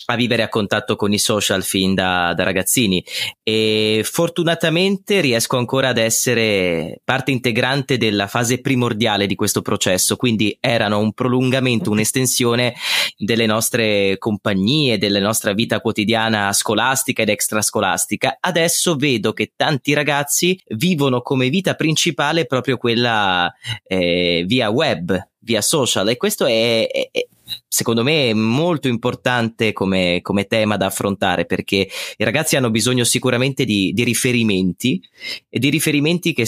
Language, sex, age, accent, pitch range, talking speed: Italian, male, 20-39, native, 105-140 Hz, 135 wpm